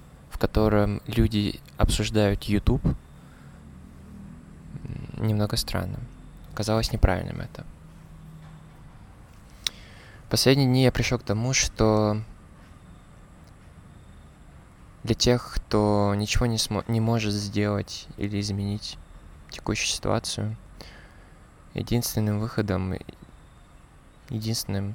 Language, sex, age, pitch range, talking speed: Russian, male, 20-39, 100-115 Hz, 80 wpm